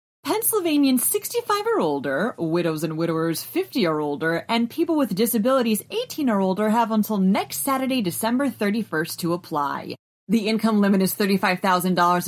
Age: 30-49